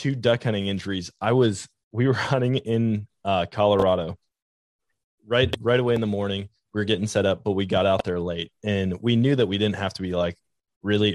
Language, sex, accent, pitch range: English, male, American, 95-115 Hz